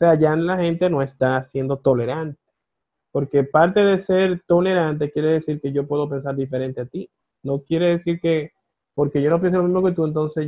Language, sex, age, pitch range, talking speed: Spanish, male, 20-39, 135-165 Hz, 205 wpm